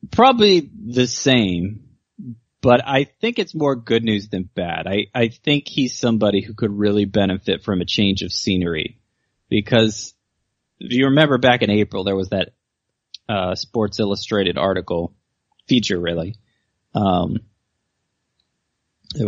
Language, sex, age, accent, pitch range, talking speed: English, male, 30-49, American, 95-120 Hz, 135 wpm